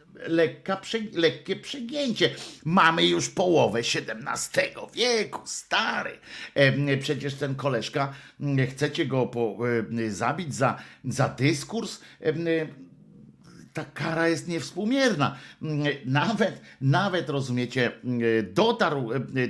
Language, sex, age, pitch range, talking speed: Polish, male, 50-69, 115-150 Hz, 80 wpm